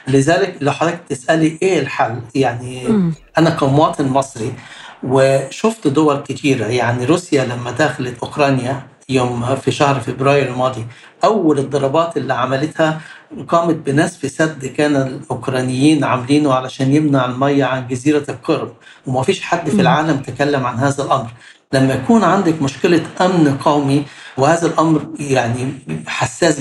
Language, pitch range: Arabic, 130-155 Hz